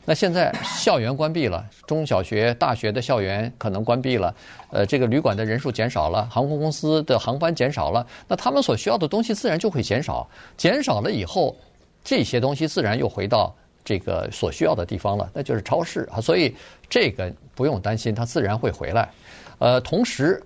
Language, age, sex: Chinese, 50-69, male